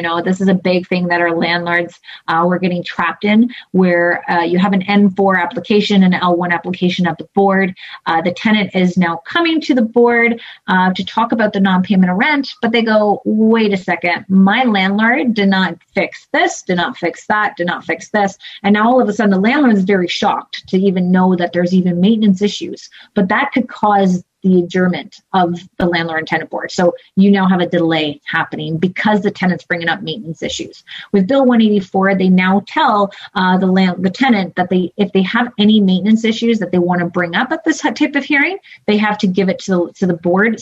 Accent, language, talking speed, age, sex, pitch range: American, English, 220 wpm, 30-49, female, 175-210 Hz